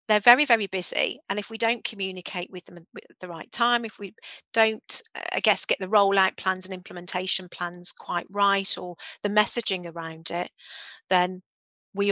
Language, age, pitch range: English, 40-59, 175-205 Hz